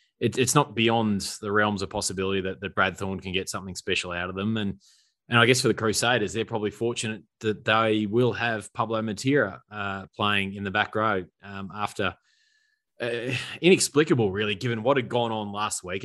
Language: English